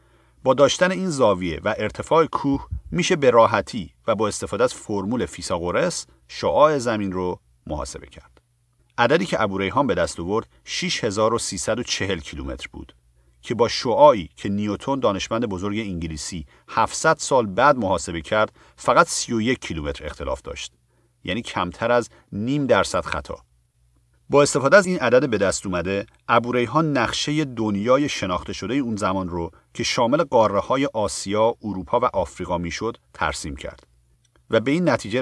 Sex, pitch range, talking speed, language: male, 85-125 Hz, 145 wpm, Persian